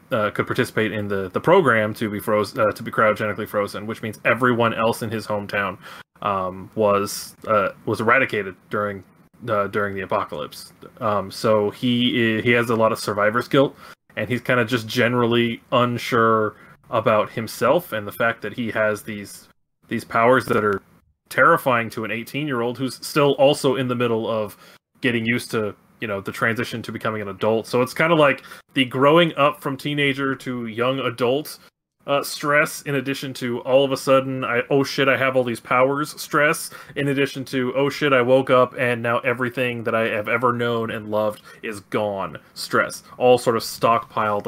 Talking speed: 195 wpm